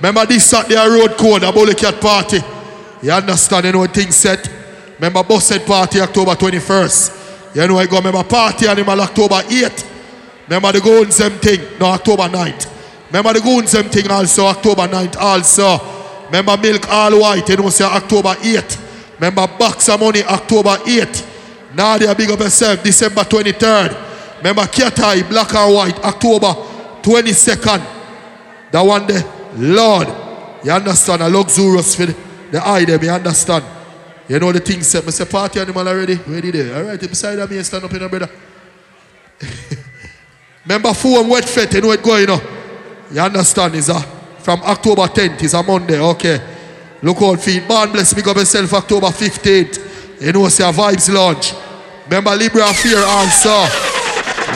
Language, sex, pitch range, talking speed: English, male, 185-210 Hz, 165 wpm